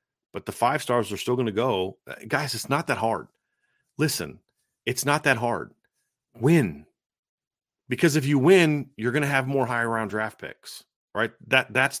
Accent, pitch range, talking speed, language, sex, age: American, 110-145 Hz, 180 wpm, English, male, 30-49